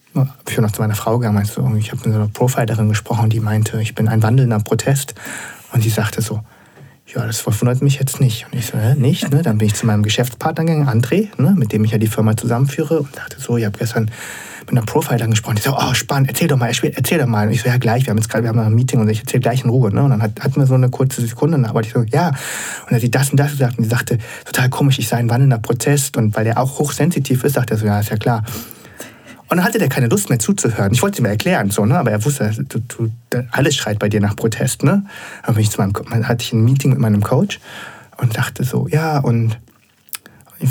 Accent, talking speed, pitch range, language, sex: German, 260 wpm, 115-135 Hz, German, male